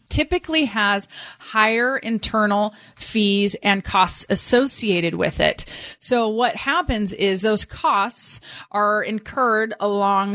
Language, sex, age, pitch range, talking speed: English, female, 30-49, 190-230 Hz, 110 wpm